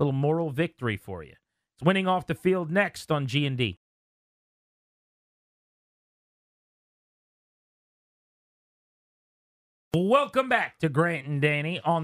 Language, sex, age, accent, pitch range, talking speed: English, male, 30-49, American, 130-175 Hz, 100 wpm